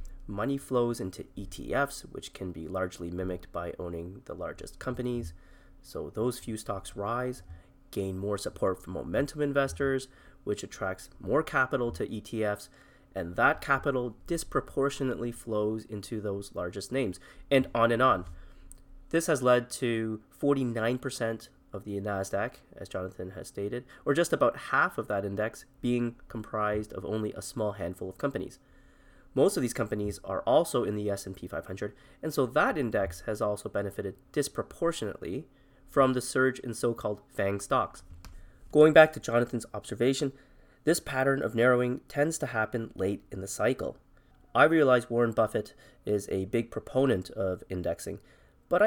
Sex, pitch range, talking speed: male, 100-130 Hz, 150 wpm